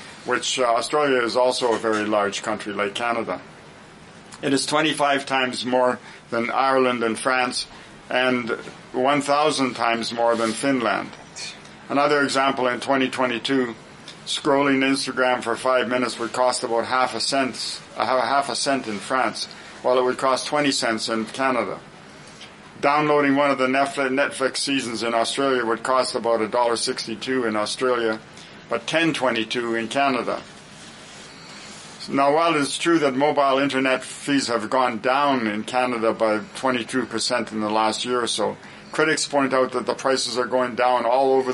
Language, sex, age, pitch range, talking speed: English, male, 50-69, 115-135 Hz, 155 wpm